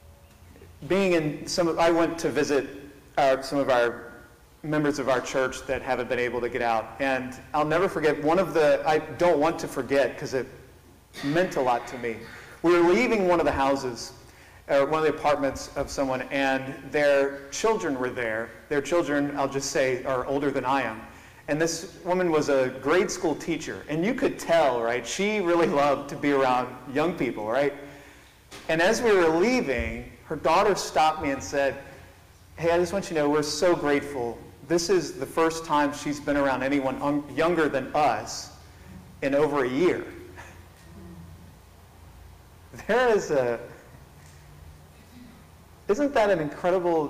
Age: 40-59